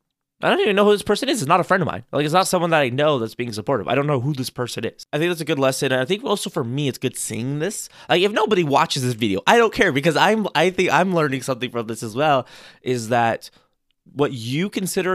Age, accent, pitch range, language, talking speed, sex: 20-39, American, 120-160 Hz, English, 285 wpm, male